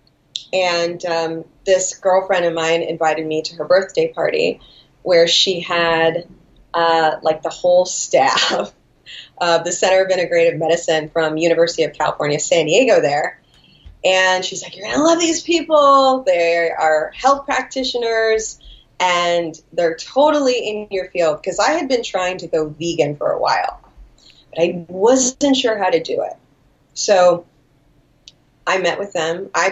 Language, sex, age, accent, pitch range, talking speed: English, female, 30-49, American, 165-195 Hz, 155 wpm